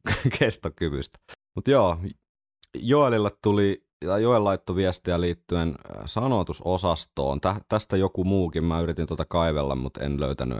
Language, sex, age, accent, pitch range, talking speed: Finnish, male, 30-49, native, 70-90 Hz, 125 wpm